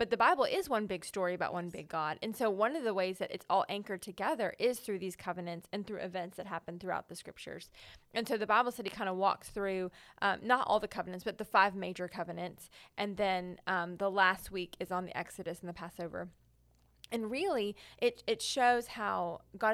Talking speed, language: 220 wpm, English